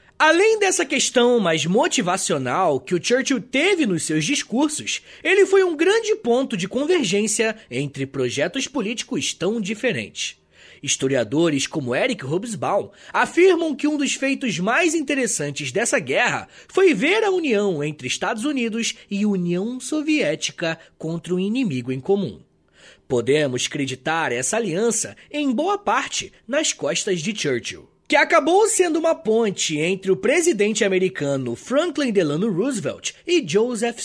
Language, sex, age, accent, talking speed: Portuguese, male, 20-39, Brazilian, 135 wpm